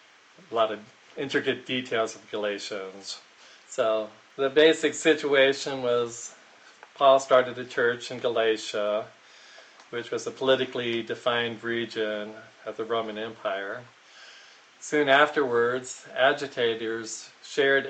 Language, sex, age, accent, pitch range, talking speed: English, male, 40-59, American, 110-130 Hz, 105 wpm